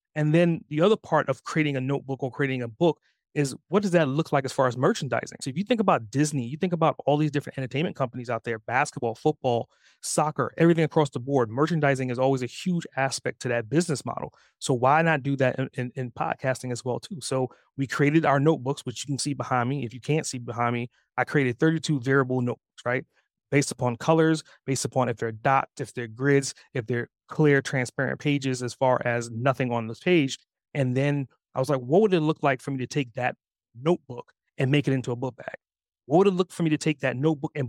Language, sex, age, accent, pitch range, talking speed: English, male, 30-49, American, 125-155 Hz, 235 wpm